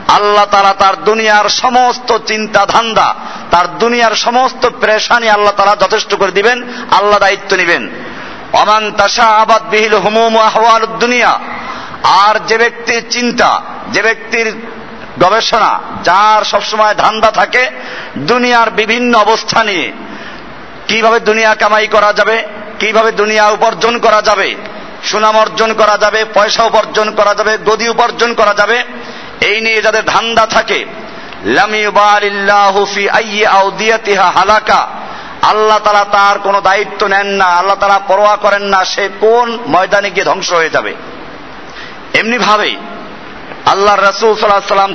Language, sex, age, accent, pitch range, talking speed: Bengali, male, 50-69, native, 200-225 Hz, 80 wpm